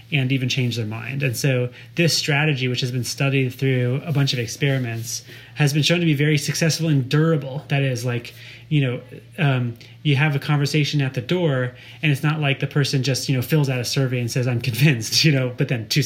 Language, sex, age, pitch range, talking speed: English, male, 30-49, 125-150 Hz, 230 wpm